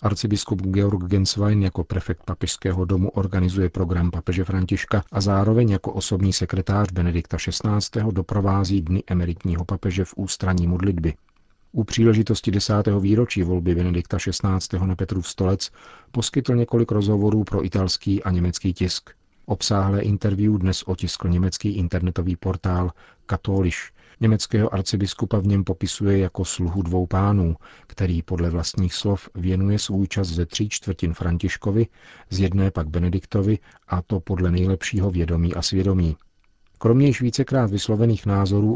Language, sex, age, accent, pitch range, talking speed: Czech, male, 40-59, native, 90-100 Hz, 135 wpm